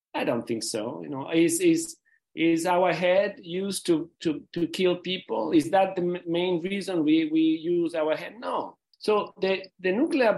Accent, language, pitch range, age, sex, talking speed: Italian, English, 140-215 Hz, 40-59, male, 185 wpm